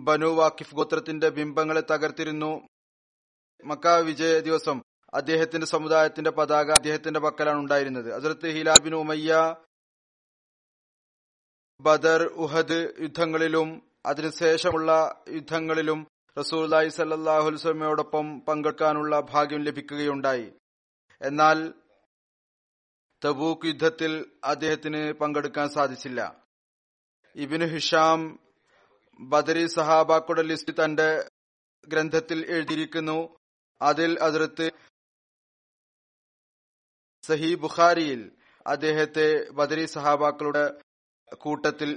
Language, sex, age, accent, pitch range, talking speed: Malayalam, male, 30-49, native, 150-160 Hz, 65 wpm